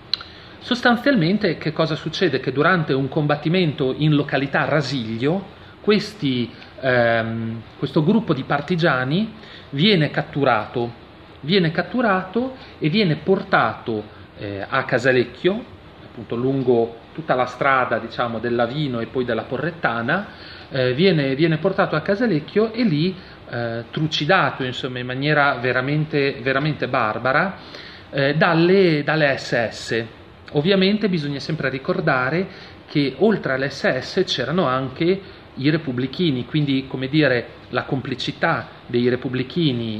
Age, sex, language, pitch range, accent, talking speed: 40-59, male, Italian, 120-165 Hz, native, 115 wpm